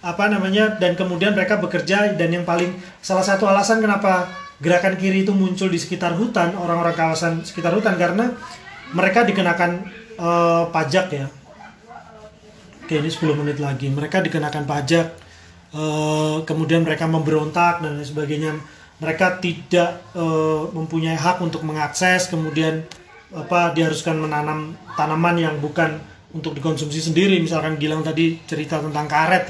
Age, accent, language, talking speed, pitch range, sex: 40-59, native, Indonesian, 140 wpm, 155-185 Hz, male